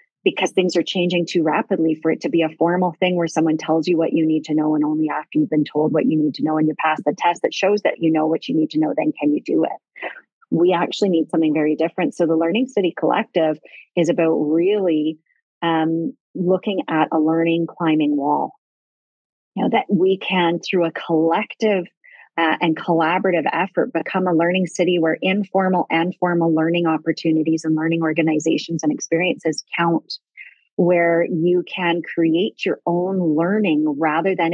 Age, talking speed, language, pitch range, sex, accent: 30-49, 195 wpm, English, 160-180 Hz, female, American